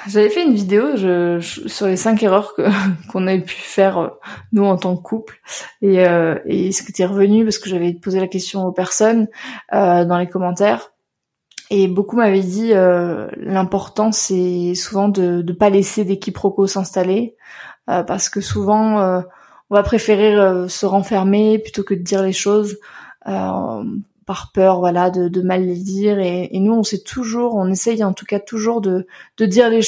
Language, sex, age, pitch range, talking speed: French, female, 20-39, 185-210 Hz, 190 wpm